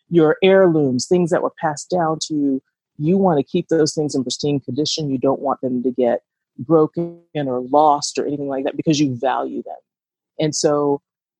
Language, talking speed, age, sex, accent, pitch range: English, 195 wpm, 40-59, female, American, 140-180 Hz